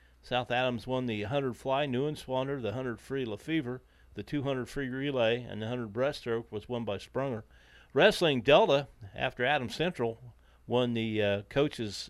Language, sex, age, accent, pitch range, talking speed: English, male, 40-59, American, 115-140 Hz, 170 wpm